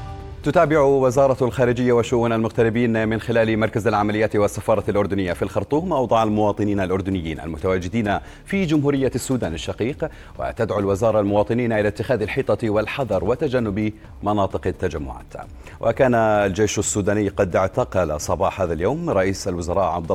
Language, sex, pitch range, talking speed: Arabic, male, 90-115 Hz, 125 wpm